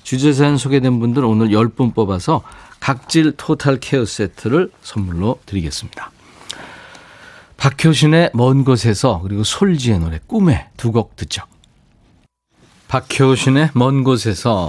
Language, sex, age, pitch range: Korean, male, 40-59, 95-140 Hz